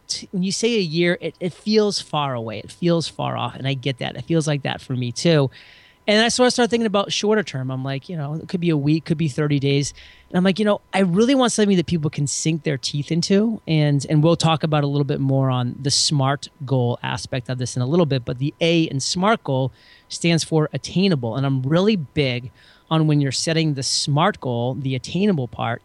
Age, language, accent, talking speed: 30-49, English, American, 245 wpm